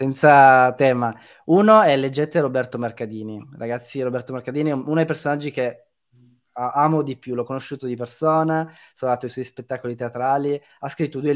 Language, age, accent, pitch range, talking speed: Italian, 20-39, native, 120-155 Hz, 165 wpm